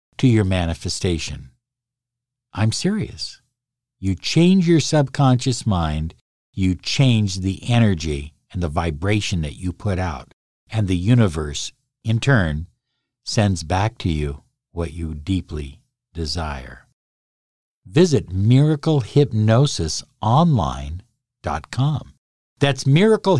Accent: American